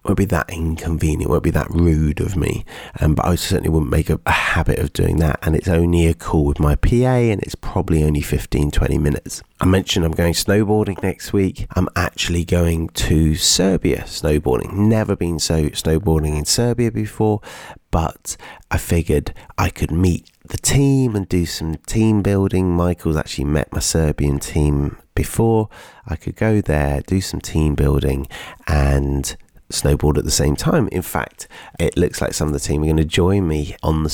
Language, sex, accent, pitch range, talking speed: English, male, British, 75-100 Hz, 190 wpm